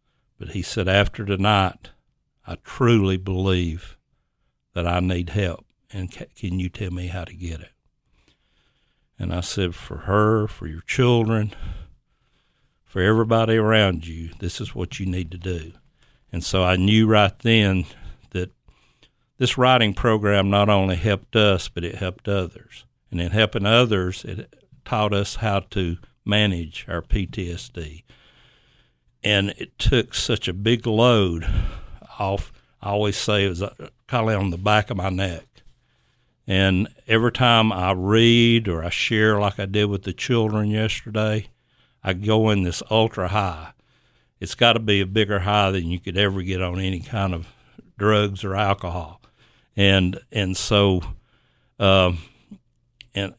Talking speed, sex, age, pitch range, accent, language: 155 wpm, male, 60-79, 90-110 Hz, American, English